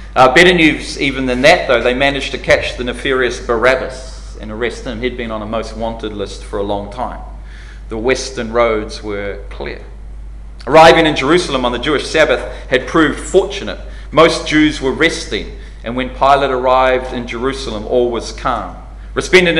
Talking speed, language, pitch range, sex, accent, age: 175 wpm, English, 105-135 Hz, male, Australian, 30-49